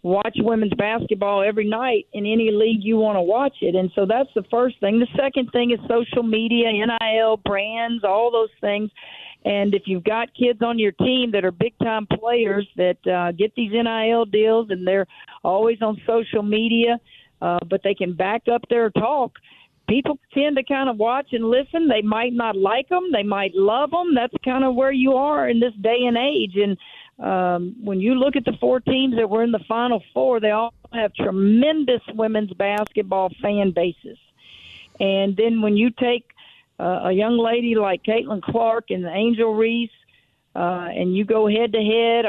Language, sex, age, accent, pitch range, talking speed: English, female, 50-69, American, 200-235 Hz, 190 wpm